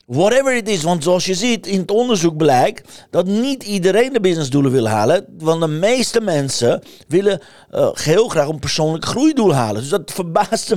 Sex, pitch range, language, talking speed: male, 140-190 Hz, Dutch, 185 wpm